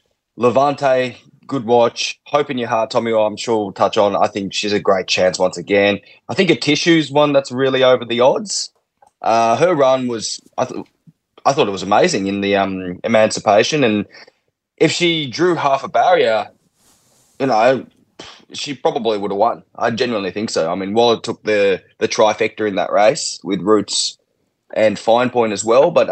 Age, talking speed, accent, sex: 20-39, 190 wpm, Australian, male